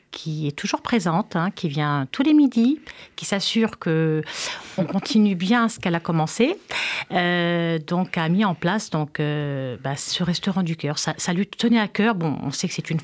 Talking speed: 205 wpm